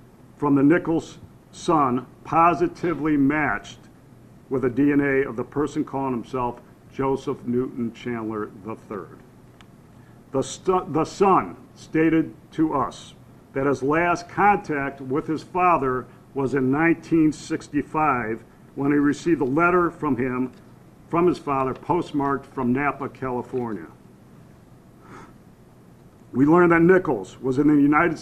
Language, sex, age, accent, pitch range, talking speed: English, male, 50-69, American, 125-160 Hz, 120 wpm